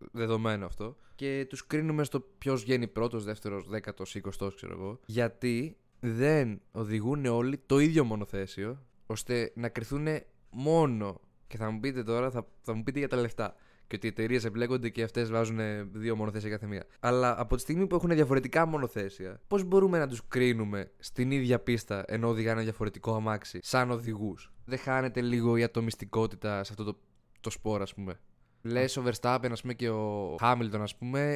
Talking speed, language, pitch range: 175 wpm, Greek, 110-140 Hz